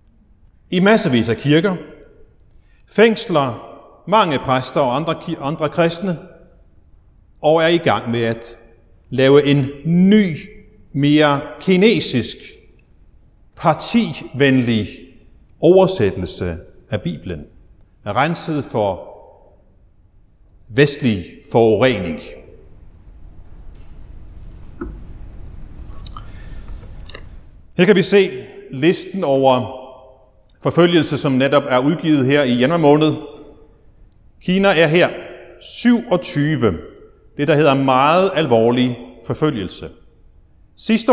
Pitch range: 100-165 Hz